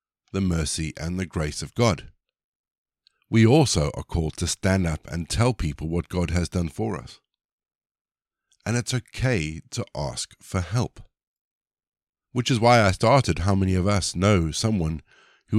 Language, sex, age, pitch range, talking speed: English, male, 50-69, 85-110 Hz, 160 wpm